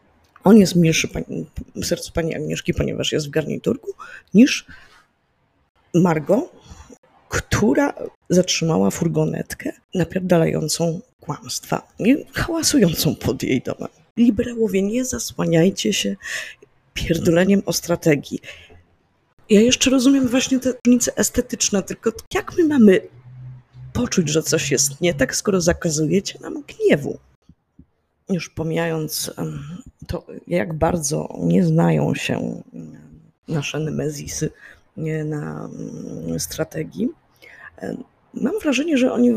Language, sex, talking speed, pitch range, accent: Polish, female, 105 wpm, 155-235 Hz, native